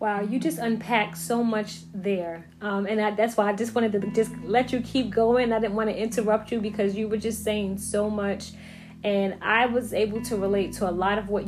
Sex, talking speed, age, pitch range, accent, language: female, 230 wpm, 30-49, 190-220 Hz, American, English